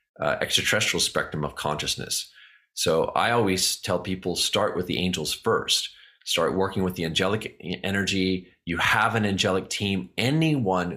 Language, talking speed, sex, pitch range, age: English, 150 wpm, male, 85-110 Hz, 30-49